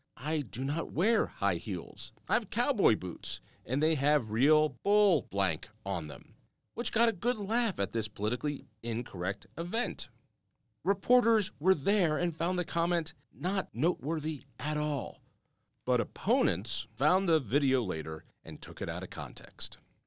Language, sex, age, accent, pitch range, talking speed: English, male, 40-59, American, 110-175 Hz, 155 wpm